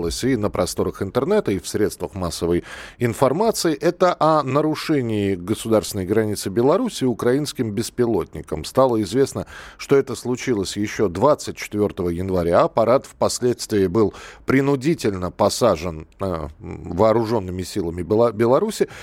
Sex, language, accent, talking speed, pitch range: male, Russian, native, 105 wpm, 100-140 Hz